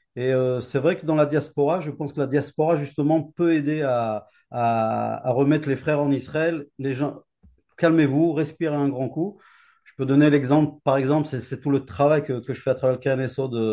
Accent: French